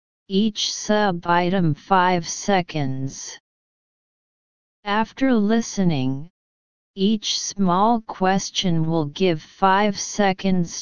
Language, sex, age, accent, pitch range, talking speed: English, female, 30-49, American, 170-205 Hz, 70 wpm